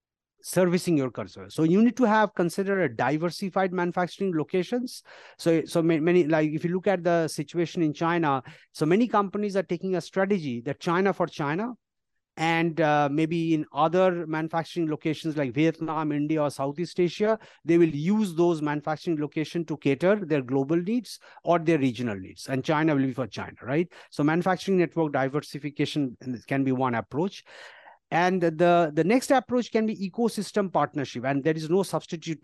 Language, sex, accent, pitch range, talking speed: English, male, Indian, 150-190 Hz, 175 wpm